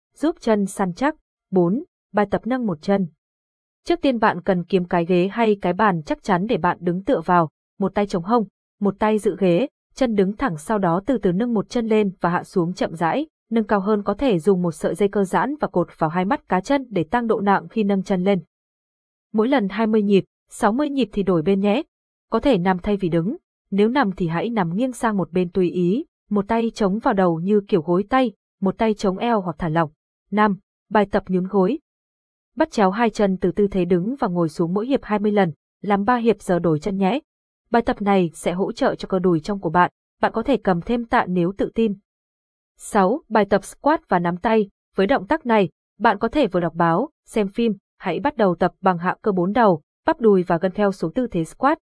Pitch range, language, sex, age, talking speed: 185-230 Hz, Vietnamese, female, 20-39, 235 wpm